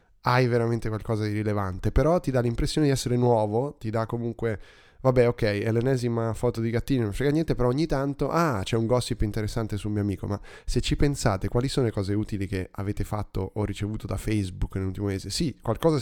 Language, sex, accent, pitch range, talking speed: Italian, male, native, 100-125 Hz, 210 wpm